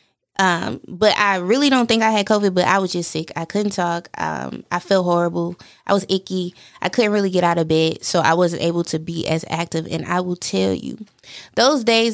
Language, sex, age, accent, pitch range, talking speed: English, female, 20-39, American, 165-210 Hz, 225 wpm